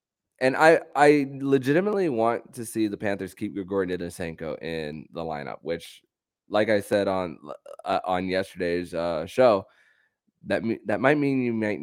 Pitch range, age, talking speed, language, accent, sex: 85-105 Hz, 20-39, 160 wpm, English, American, male